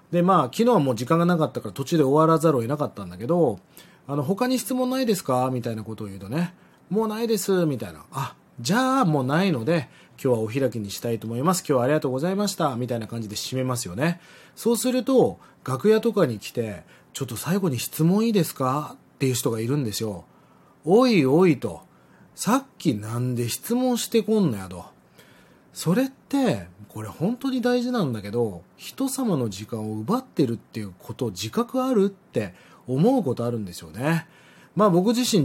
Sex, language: male, Japanese